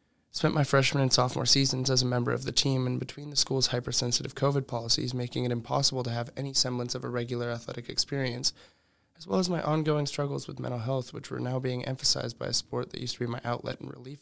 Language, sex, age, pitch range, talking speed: English, male, 20-39, 120-135 Hz, 235 wpm